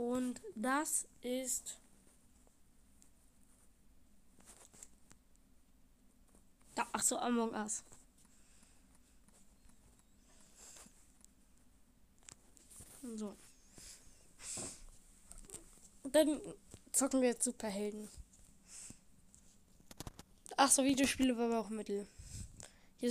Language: German